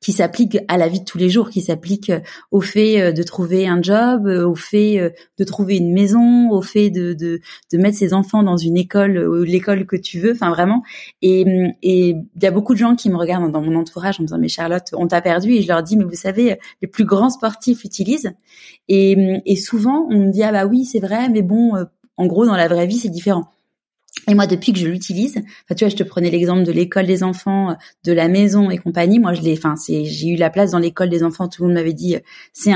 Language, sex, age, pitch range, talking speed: French, female, 20-39, 175-210 Hz, 260 wpm